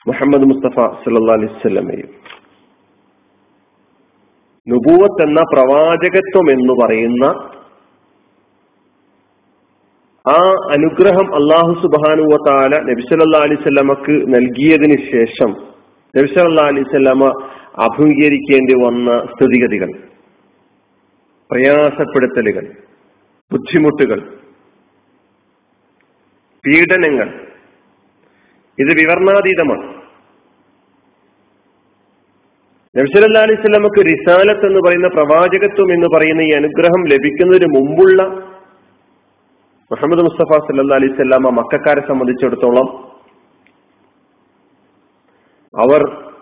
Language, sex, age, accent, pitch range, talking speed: Malayalam, male, 40-59, native, 135-190 Hz, 60 wpm